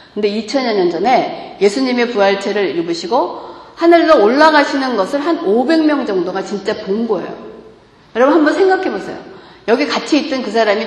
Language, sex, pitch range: Korean, female, 210-315 Hz